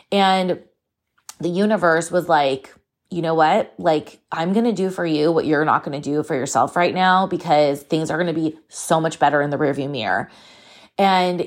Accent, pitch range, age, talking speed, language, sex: American, 160-210 Hz, 20-39, 205 wpm, English, female